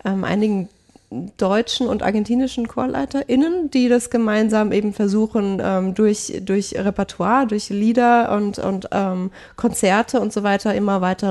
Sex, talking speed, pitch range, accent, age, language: female, 140 wpm, 190-235 Hz, German, 30-49, German